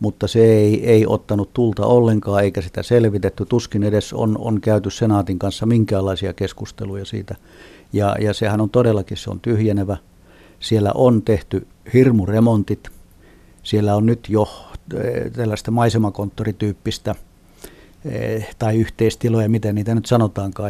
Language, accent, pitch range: Finnish, native, 100-115 Hz